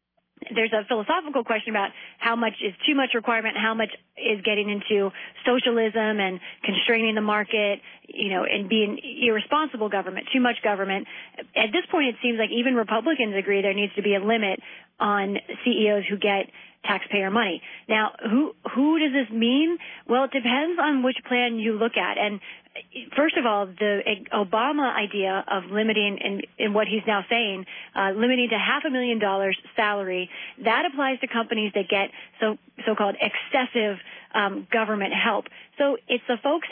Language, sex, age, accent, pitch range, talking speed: English, female, 30-49, American, 205-245 Hz, 175 wpm